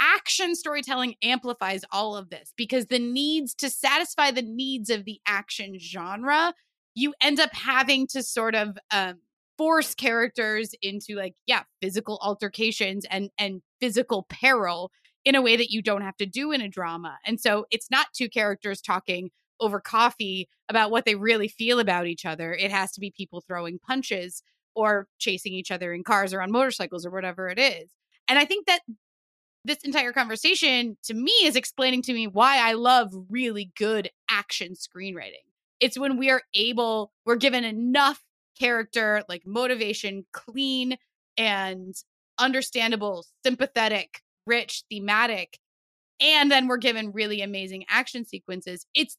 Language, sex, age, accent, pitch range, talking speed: English, female, 20-39, American, 200-260 Hz, 160 wpm